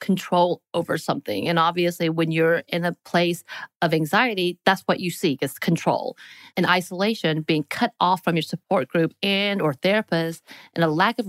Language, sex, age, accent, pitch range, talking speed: English, female, 30-49, American, 160-205 Hz, 180 wpm